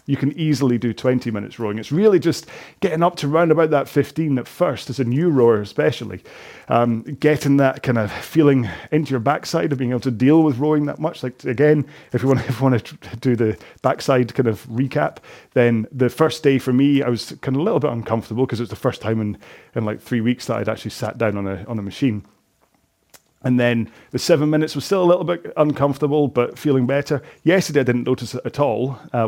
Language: English